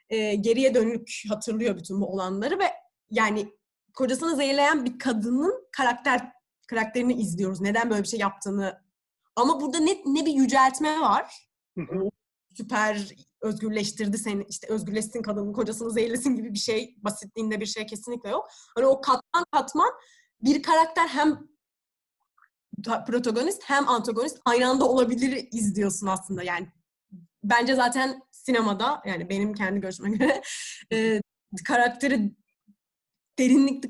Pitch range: 210-260 Hz